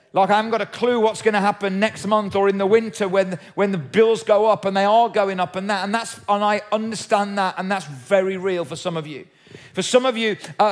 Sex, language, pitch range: male, English, 175-210 Hz